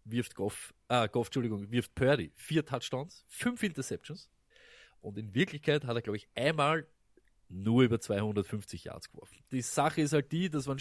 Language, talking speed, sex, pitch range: German, 170 wpm, male, 115-160 Hz